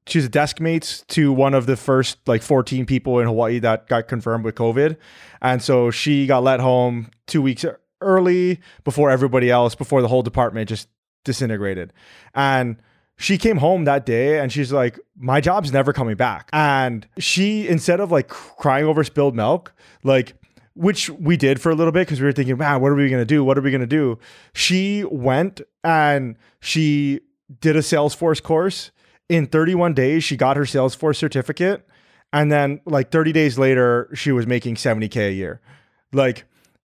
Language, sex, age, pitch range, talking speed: English, male, 20-39, 125-155 Hz, 185 wpm